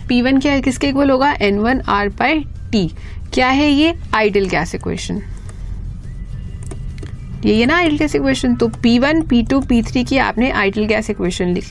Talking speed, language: 170 wpm, Hindi